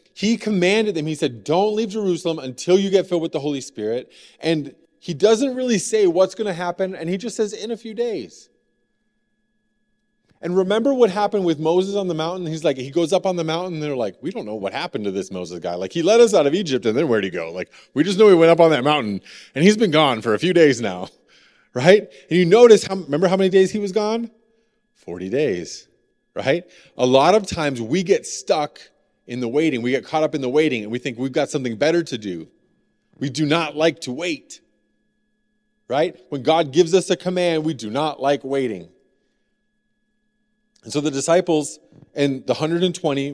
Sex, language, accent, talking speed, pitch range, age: male, English, American, 215 wpm, 145-205 Hz, 30-49